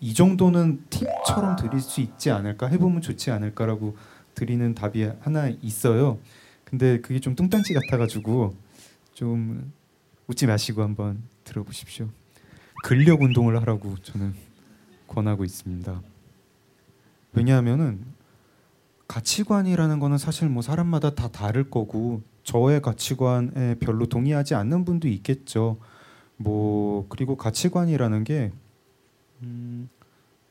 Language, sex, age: Korean, male, 30-49